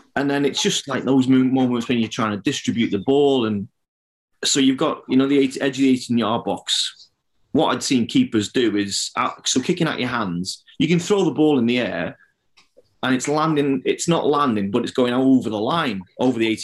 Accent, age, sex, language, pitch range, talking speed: British, 30-49, male, English, 110-145 Hz, 215 wpm